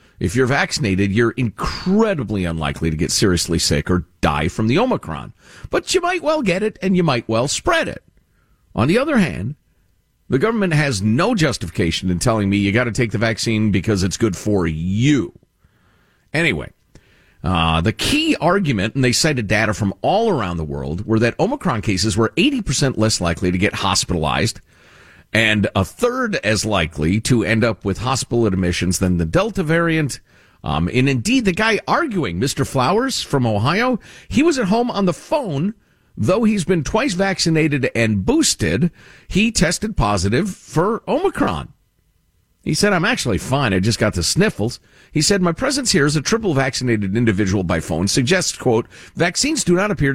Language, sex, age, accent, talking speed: English, male, 40-59, American, 175 wpm